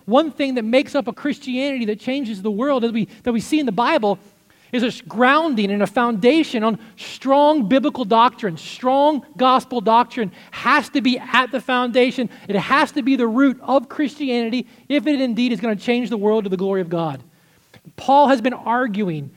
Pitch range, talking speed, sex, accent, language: 215-270 Hz, 200 wpm, male, American, English